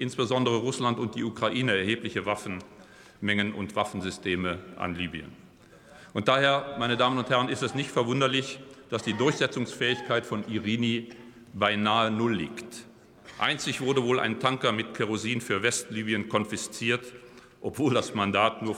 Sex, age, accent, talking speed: male, 40-59, German, 135 wpm